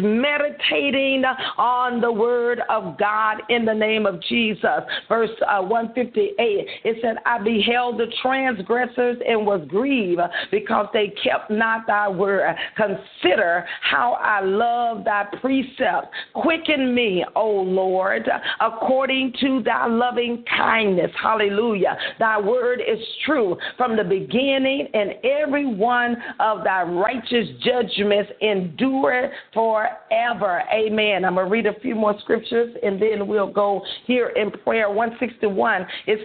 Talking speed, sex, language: 130 wpm, female, English